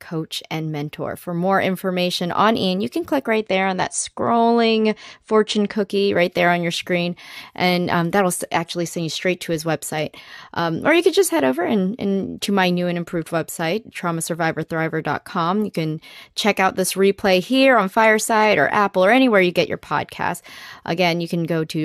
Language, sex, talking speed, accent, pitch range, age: English, female, 195 wpm, American, 170-215 Hz, 20-39